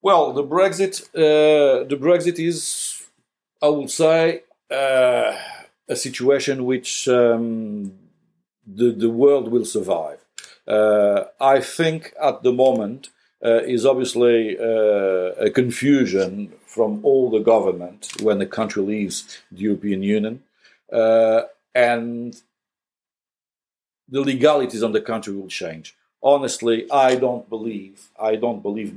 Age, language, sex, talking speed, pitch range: 50-69, English, male, 120 wpm, 105-135 Hz